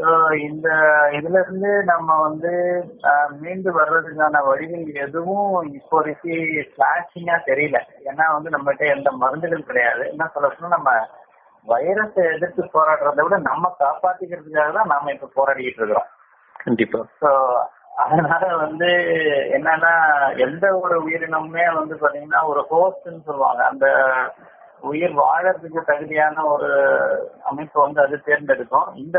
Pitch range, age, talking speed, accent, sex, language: 140-170 Hz, 30-49, 75 wpm, native, male, Tamil